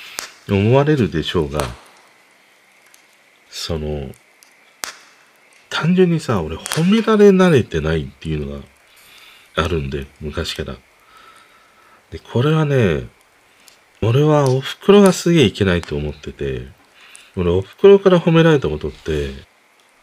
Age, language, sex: 40-59, Japanese, male